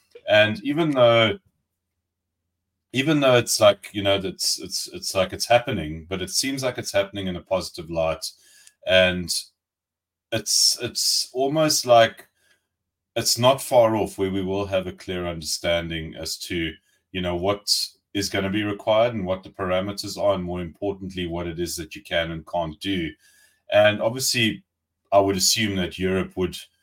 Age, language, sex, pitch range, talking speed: 30-49, English, male, 85-100 Hz, 170 wpm